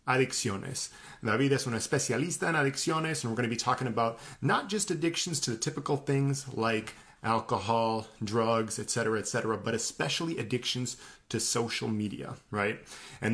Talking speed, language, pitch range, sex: 150 wpm, English, 115-145 Hz, male